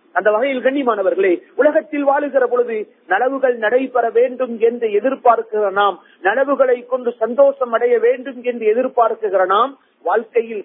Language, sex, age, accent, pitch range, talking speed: Tamil, male, 50-69, native, 215-280 Hz, 125 wpm